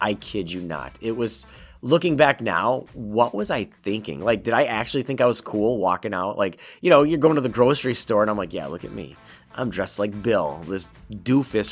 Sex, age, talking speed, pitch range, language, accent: male, 30-49, 230 wpm, 100-140 Hz, English, American